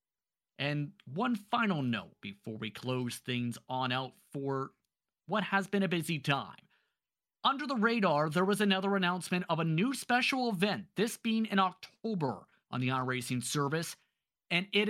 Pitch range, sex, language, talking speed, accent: 145-210 Hz, male, English, 155 wpm, American